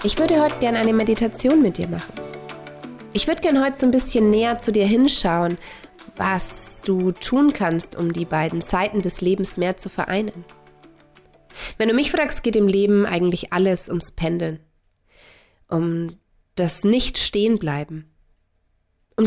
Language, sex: German, female